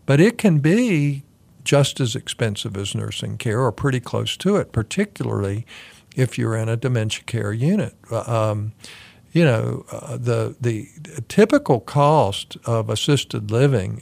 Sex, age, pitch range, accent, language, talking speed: male, 50-69, 110-130 Hz, American, English, 145 wpm